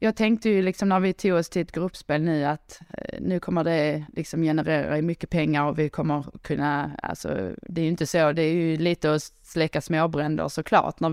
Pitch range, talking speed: 155-185 Hz, 210 wpm